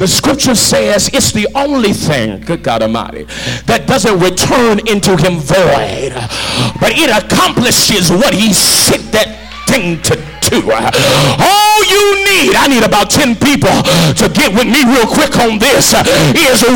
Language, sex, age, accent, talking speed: English, male, 50-69, American, 155 wpm